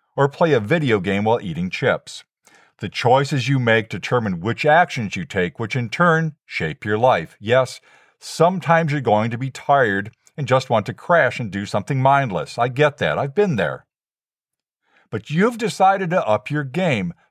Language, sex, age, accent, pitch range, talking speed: English, male, 50-69, American, 110-150 Hz, 180 wpm